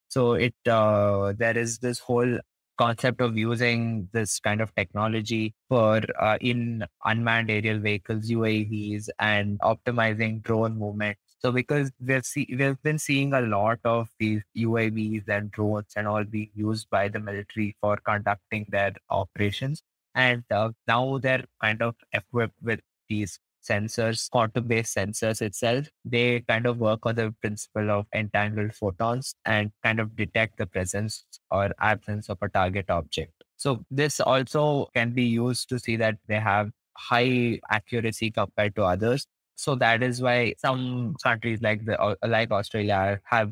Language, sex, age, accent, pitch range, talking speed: English, male, 20-39, Indian, 105-120 Hz, 155 wpm